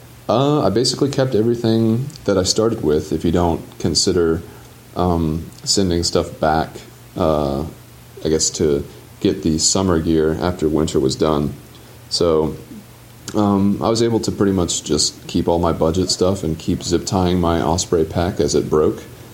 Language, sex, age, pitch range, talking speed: English, male, 30-49, 80-105 Hz, 160 wpm